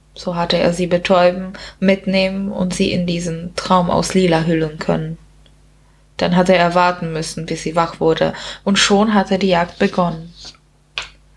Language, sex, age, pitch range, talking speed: German, female, 20-39, 175-200 Hz, 160 wpm